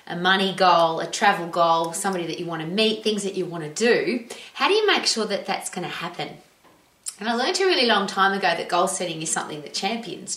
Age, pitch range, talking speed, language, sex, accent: 30-49, 175-220 Hz, 250 wpm, English, female, Australian